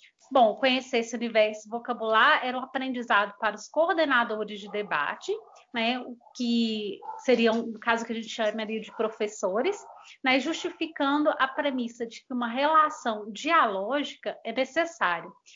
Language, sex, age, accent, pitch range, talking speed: Portuguese, female, 20-39, Brazilian, 235-305 Hz, 145 wpm